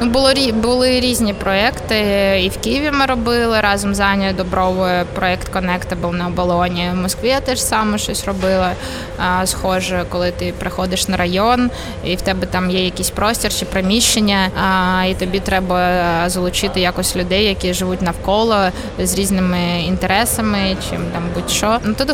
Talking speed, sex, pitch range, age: 160 wpm, female, 185-230 Hz, 20-39